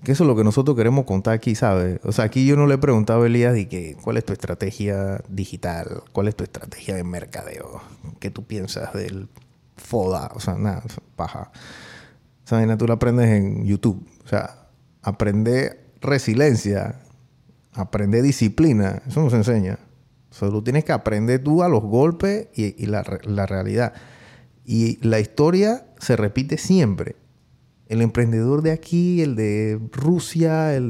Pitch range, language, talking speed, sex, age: 105-145 Hz, Spanish, 165 wpm, male, 30-49